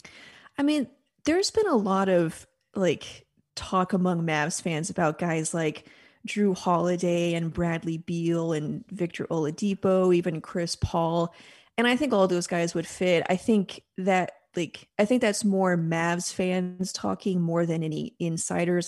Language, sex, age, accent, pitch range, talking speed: English, female, 30-49, American, 170-205 Hz, 155 wpm